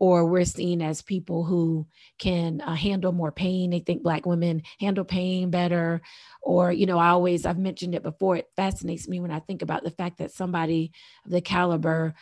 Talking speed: 200 wpm